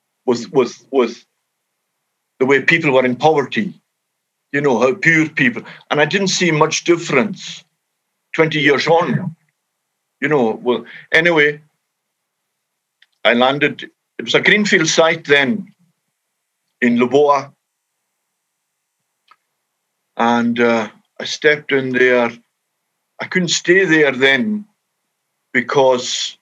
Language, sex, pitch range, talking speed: English, male, 125-165 Hz, 115 wpm